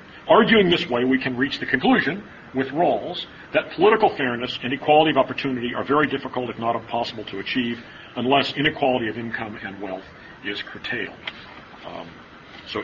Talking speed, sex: 165 wpm, male